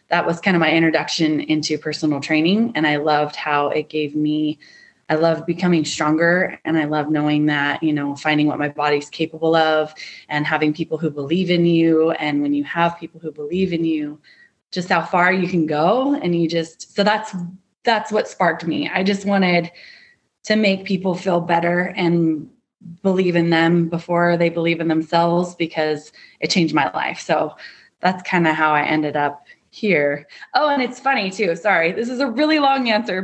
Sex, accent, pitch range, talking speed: female, American, 160-220 Hz, 195 wpm